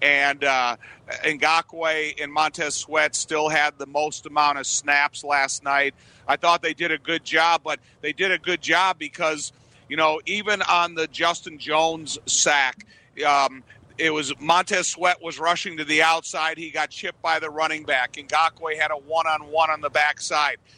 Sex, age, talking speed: male, 50-69, 180 wpm